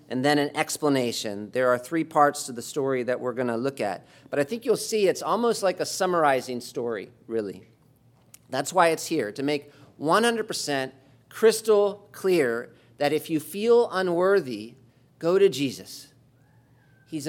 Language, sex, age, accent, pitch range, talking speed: English, male, 40-59, American, 125-165 Hz, 165 wpm